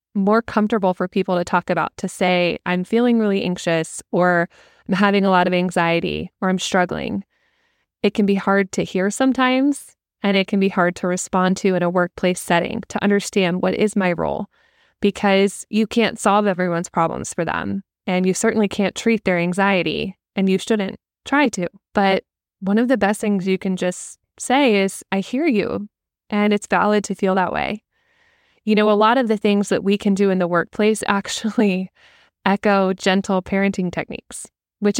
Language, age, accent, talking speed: English, 20-39, American, 185 wpm